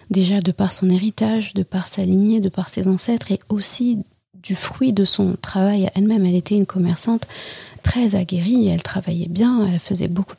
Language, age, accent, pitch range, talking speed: French, 30-49, French, 185-215 Hz, 190 wpm